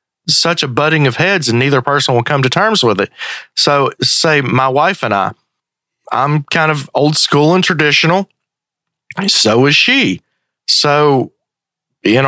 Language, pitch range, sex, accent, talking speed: English, 130-155 Hz, male, American, 155 wpm